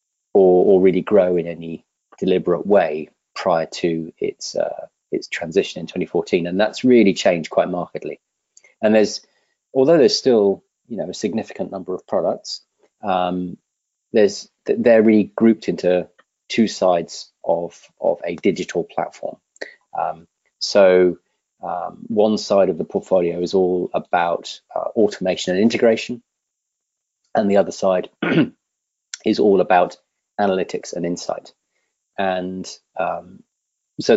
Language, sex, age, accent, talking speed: English, male, 30-49, British, 130 wpm